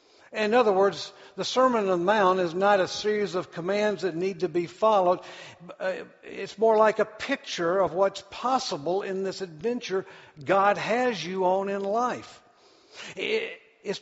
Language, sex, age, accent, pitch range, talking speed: English, male, 60-79, American, 165-220 Hz, 160 wpm